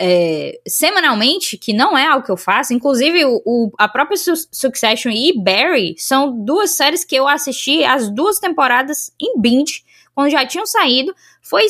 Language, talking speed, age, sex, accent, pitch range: Portuguese, 170 wpm, 10-29, female, Brazilian, 245-335 Hz